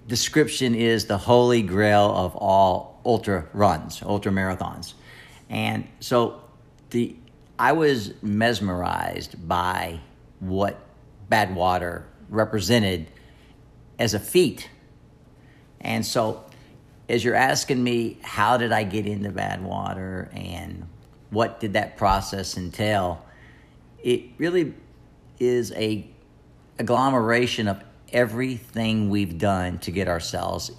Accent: American